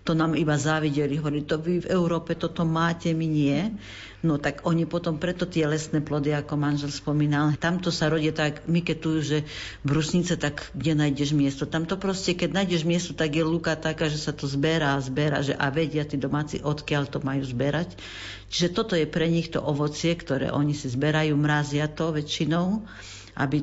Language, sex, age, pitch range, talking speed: Slovak, female, 50-69, 145-165 Hz, 190 wpm